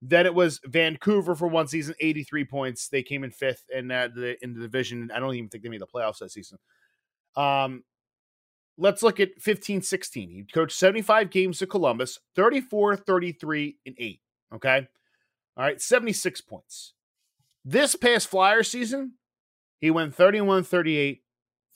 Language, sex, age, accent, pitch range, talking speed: English, male, 30-49, American, 130-200 Hz, 150 wpm